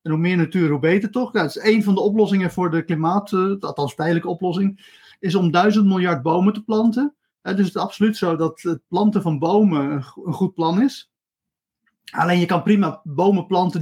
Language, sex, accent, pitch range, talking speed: Dutch, male, Dutch, 155-195 Hz, 220 wpm